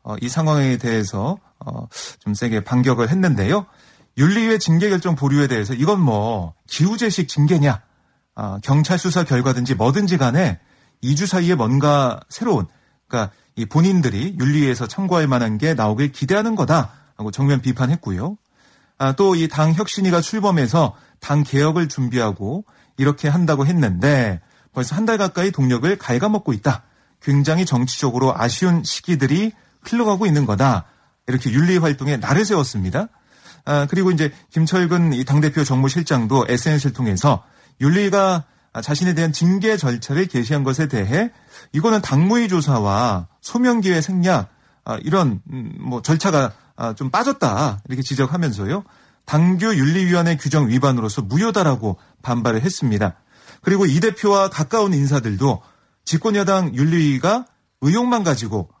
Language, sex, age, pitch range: Korean, male, 30-49, 125-180 Hz